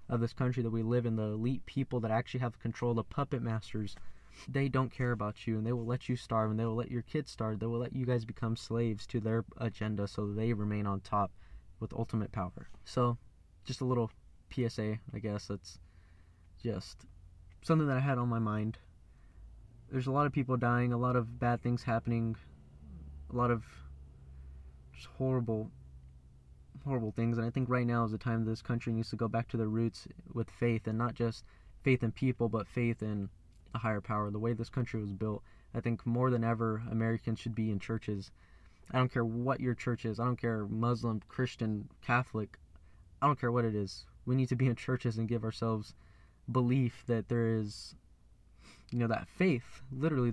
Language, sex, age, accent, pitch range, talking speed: English, male, 10-29, American, 105-120 Hz, 205 wpm